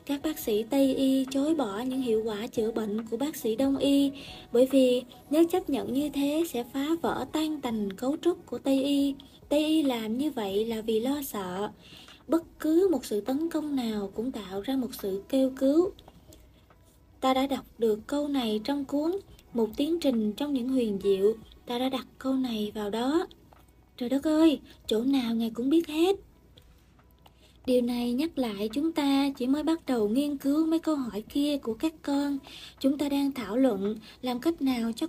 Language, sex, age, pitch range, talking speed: Vietnamese, female, 20-39, 235-290 Hz, 200 wpm